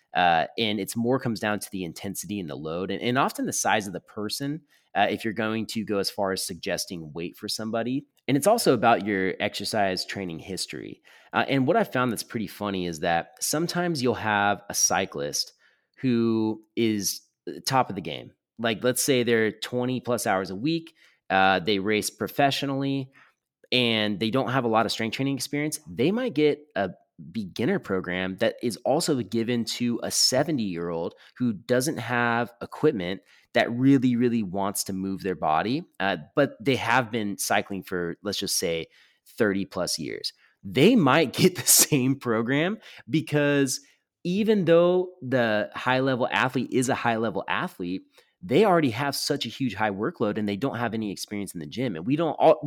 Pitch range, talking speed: 100-135 Hz, 180 wpm